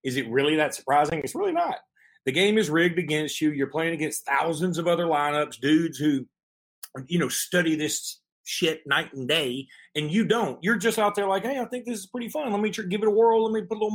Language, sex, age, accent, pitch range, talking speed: English, male, 30-49, American, 155-225 Hz, 250 wpm